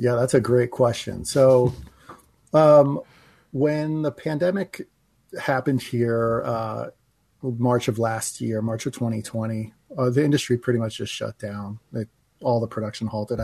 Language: English